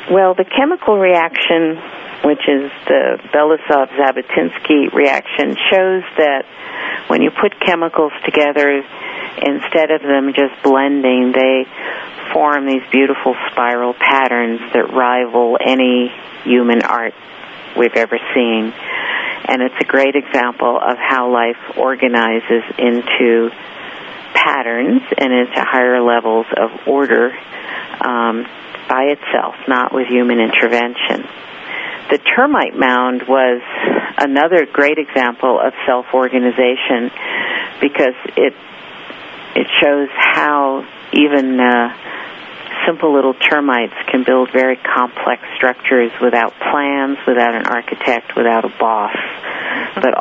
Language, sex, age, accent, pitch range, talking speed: English, female, 50-69, American, 120-145 Hz, 110 wpm